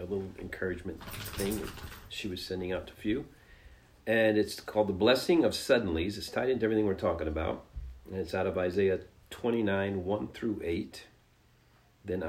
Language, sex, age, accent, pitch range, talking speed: English, male, 40-59, American, 90-110 Hz, 165 wpm